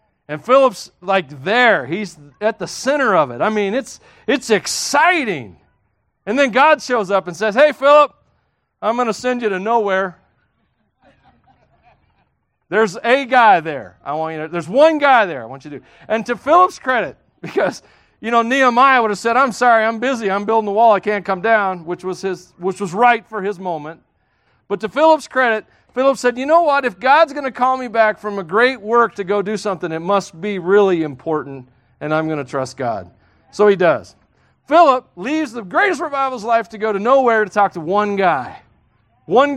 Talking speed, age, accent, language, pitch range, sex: 200 wpm, 40-59, American, English, 190-265 Hz, male